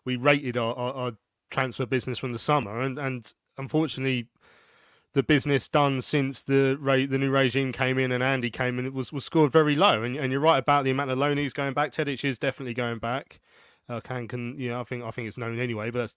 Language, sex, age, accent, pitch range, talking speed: English, male, 30-49, British, 125-145 Hz, 245 wpm